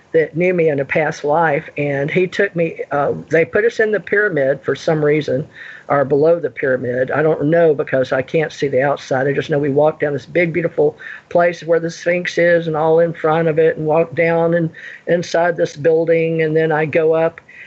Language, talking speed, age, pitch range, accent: English, 225 wpm, 50-69, 150-180 Hz, American